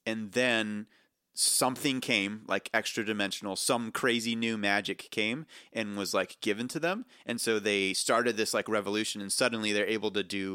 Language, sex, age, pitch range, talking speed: English, male, 30-49, 100-120 Hz, 175 wpm